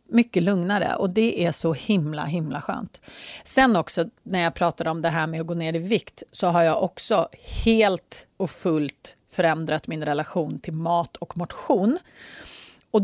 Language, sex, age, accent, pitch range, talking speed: Swedish, female, 30-49, native, 165-225 Hz, 175 wpm